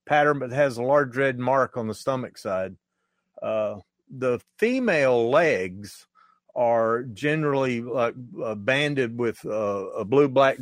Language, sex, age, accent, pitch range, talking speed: English, male, 50-69, American, 110-140 Hz, 140 wpm